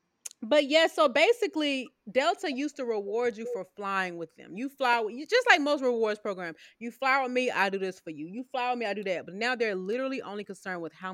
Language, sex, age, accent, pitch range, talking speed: English, female, 30-49, American, 200-265 Hz, 250 wpm